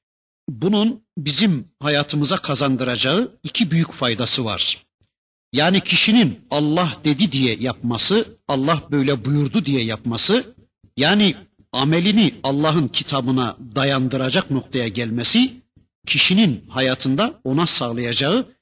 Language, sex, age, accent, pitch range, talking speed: Turkish, male, 50-69, native, 125-190 Hz, 95 wpm